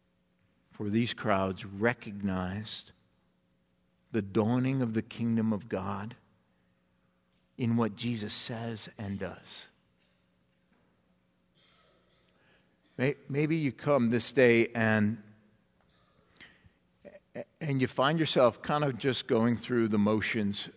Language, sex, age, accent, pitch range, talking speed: English, male, 50-69, American, 100-130 Hz, 100 wpm